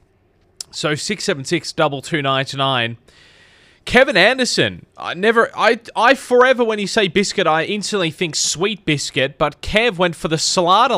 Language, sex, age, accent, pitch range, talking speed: English, male, 20-39, Australian, 135-200 Hz, 165 wpm